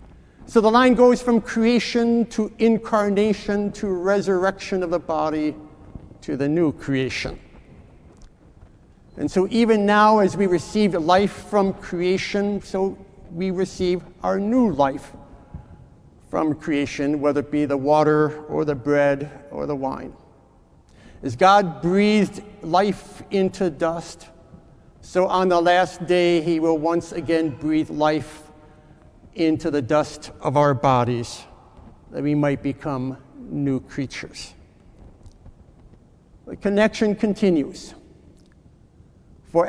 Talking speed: 120 wpm